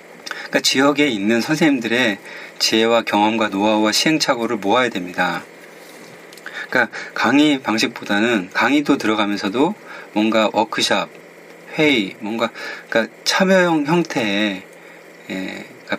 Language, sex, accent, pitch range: Korean, male, native, 110-160 Hz